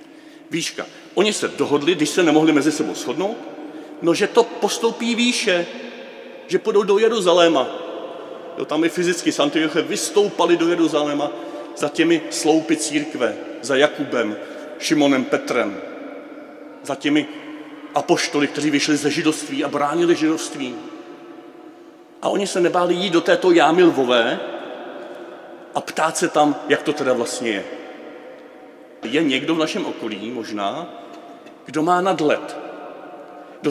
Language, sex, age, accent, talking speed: Czech, male, 40-59, native, 130 wpm